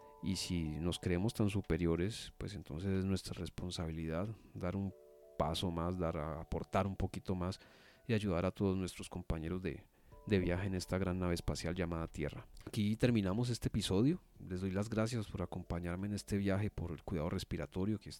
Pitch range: 85-110 Hz